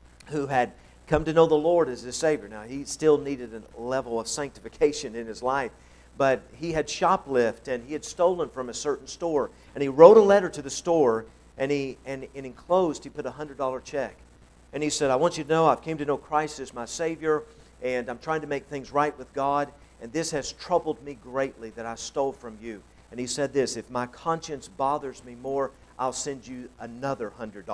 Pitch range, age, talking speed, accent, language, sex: 125-170 Hz, 50-69, 220 wpm, American, English, male